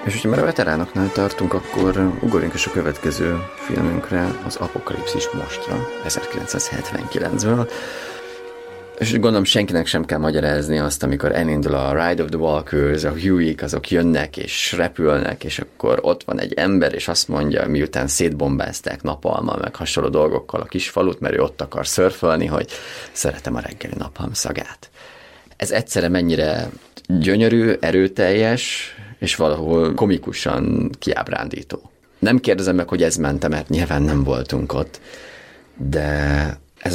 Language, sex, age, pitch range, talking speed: Hungarian, male, 30-49, 75-95 Hz, 140 wpm